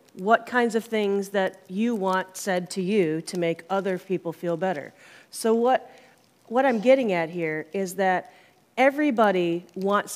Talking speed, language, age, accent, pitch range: 160 wpm, English, 40-59, American, 175-205 Hz